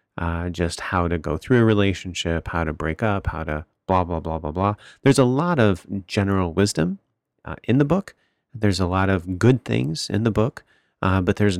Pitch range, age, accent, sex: 85-105 Hz, 30-49, American, male